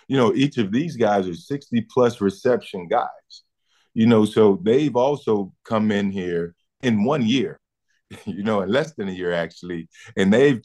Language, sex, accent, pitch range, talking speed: English, male, American, 95-115 Hz, 180 wpm